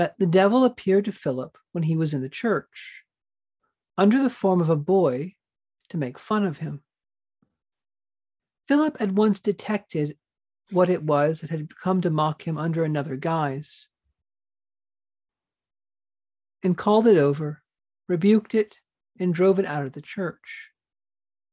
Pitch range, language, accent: 140-190 Hz, English, American